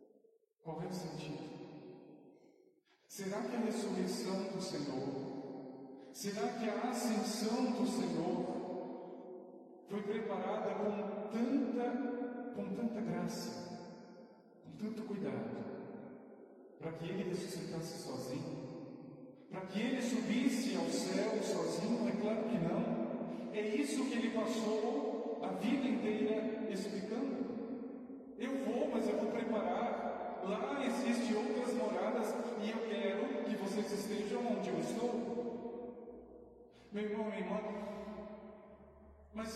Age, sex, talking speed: 40-59, male, 115 wpm